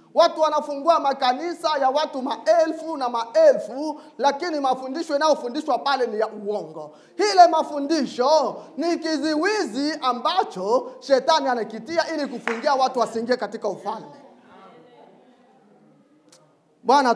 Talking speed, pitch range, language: 105 wpm, 230-315 Hz, English